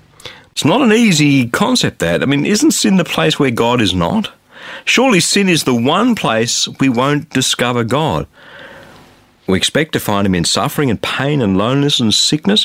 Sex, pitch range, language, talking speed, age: male, 115-170 Hz, English, 185 wpm, 50-69